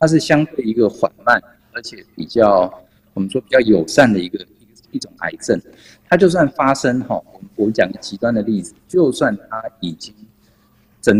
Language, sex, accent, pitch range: Chinese, male, native, 105-155 Hz